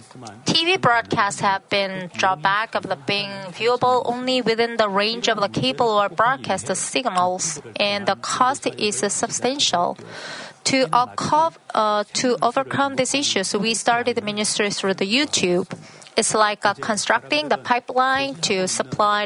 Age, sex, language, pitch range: 30-49, female, Korean, 200-250 Hz